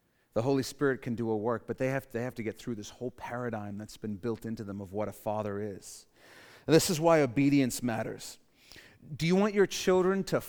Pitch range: 115-145 Hz